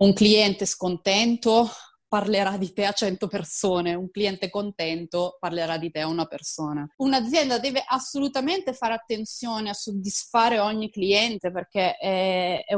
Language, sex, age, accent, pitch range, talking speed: Italian, female, 20-39, native, 200-250 Hz, 135 wpm